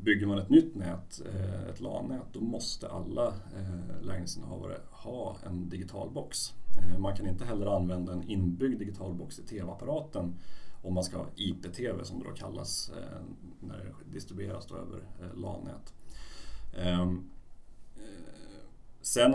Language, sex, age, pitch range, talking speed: Swedish, male, 40-59, 90-110 Hz, 125 wpm